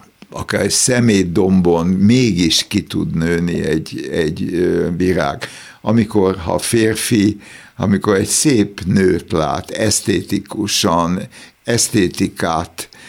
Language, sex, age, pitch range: Hungarian, male, 60-79, 85-110 Hz